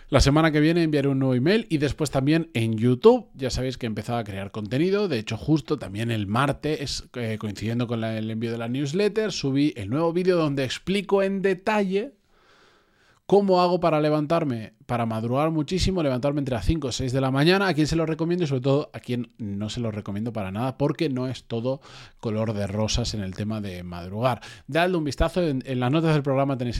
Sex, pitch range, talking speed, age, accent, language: male, 115-155 Hz, 215 wpm, 20-39, Spanish, Spanish